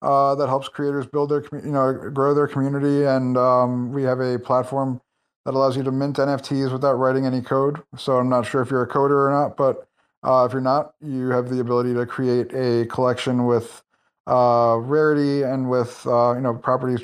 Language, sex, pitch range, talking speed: English, male, 125-145 Hz, 210 wpm